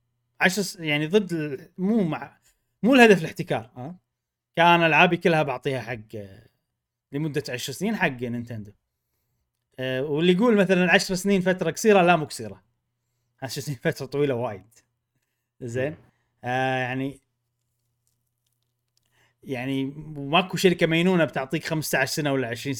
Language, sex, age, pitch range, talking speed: Arabic, male, 30-49, 120-180 Hz, 130 wpm